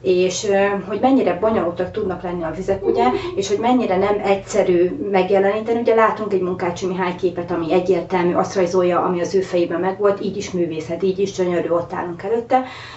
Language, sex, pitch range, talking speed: Hungarian, female, 180-200 Hz, 180 wpm